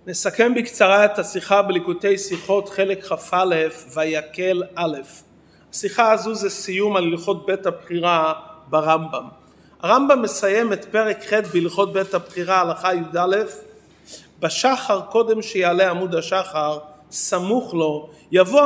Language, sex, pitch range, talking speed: English, male, 180-235 Hz, 125 wpm